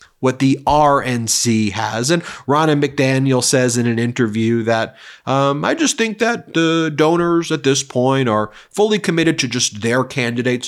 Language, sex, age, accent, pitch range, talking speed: English, male, 30-49, American, 125-170 Hz, 165 wpm